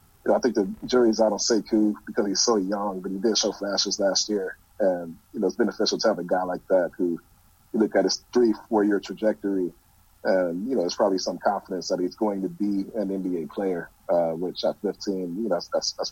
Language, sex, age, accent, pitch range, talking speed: English, male, 30-49, American, 95-110 Hz, 235 wpm